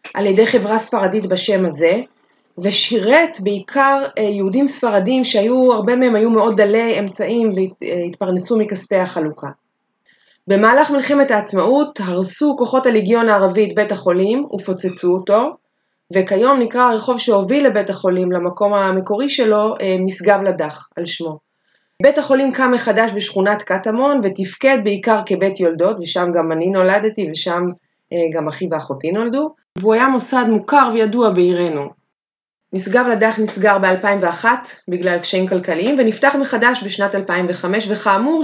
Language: Hebrew